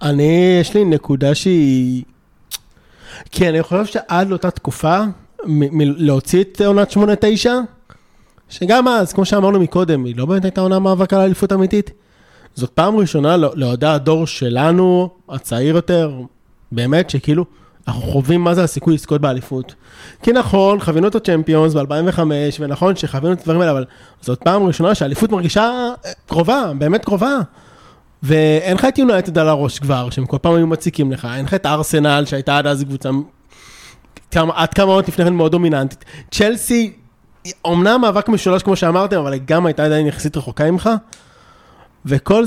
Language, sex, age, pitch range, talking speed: Hebrew, male, 30-49, 145-195 Hz, 160 wpm